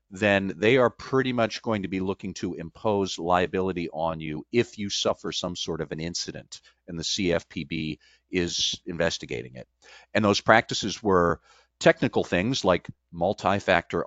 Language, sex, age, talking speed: English, male, 50-69, 155 wpm